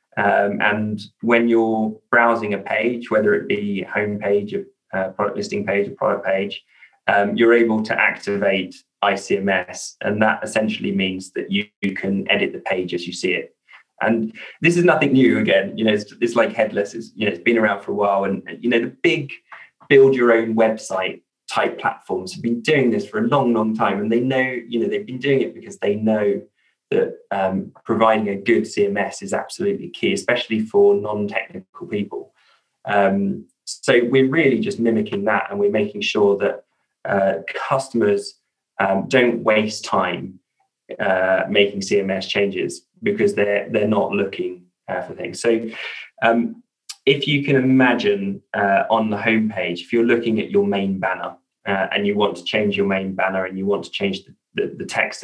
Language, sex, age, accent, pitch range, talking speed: English, male, 20-39, British, 100-120 Hz, 185 wpm